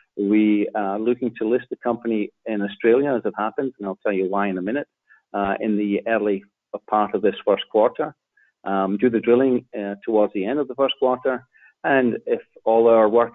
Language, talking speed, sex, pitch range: English, 205 wpm, male, 105-125 Hz